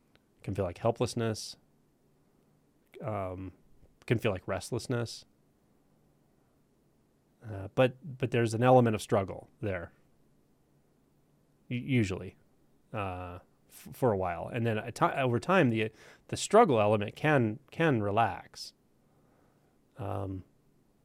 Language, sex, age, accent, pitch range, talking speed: English, male, 30-49, American, 100-115 Hz, 105 wpm